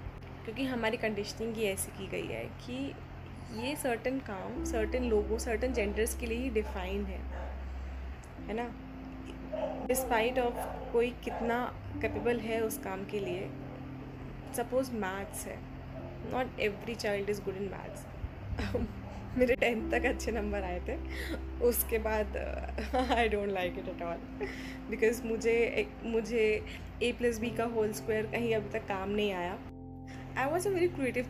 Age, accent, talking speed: 10-29, native, 150 wpm